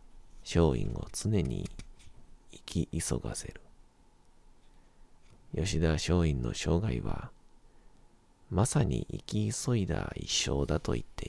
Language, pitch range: Japanese, 85-105 Hz